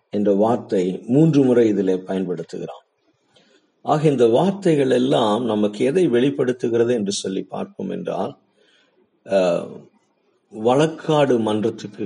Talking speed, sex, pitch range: 90 wpm, male, 105-140 Hz